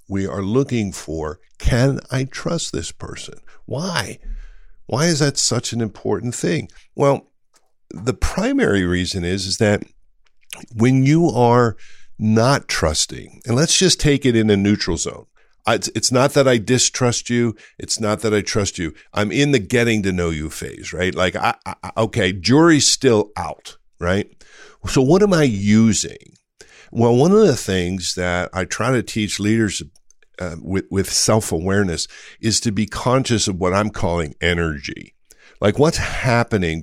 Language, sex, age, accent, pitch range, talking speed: English, male, 50-69, American, 95-120 Hz, 160 wpm